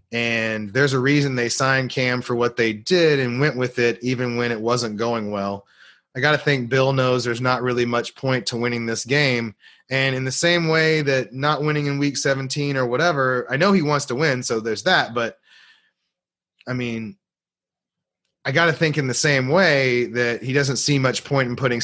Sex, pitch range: male, 115-130 Hz